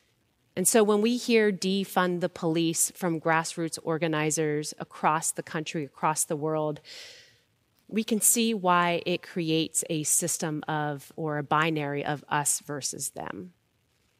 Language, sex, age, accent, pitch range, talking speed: English, female, 30-49, American, 145-195 Hz, 140 wpm